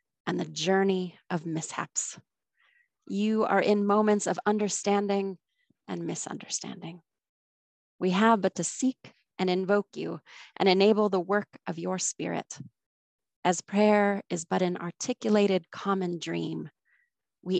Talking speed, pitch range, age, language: 125 wpm, 175-210 Hz, 30-49, English